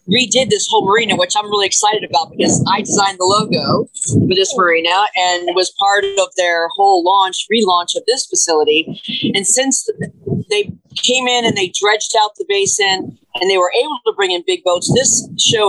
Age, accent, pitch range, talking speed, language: 40-59, American, 180-230 Hz, 190 wpm, English